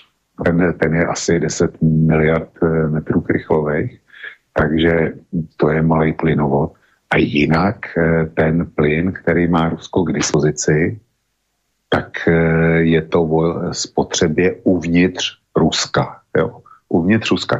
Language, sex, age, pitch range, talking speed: Slovak, male, 50-69, 80-90 Hz, 105 wpm